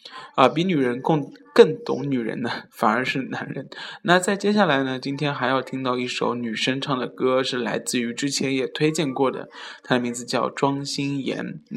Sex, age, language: male, 10-29, Chinese